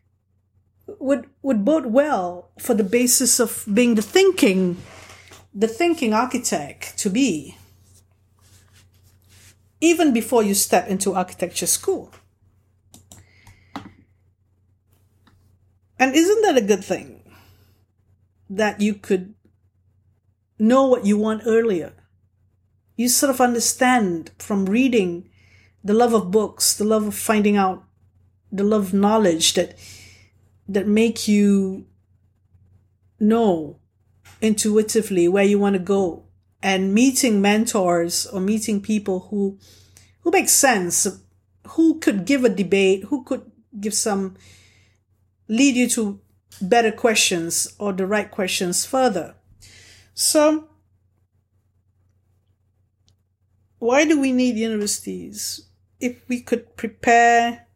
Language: English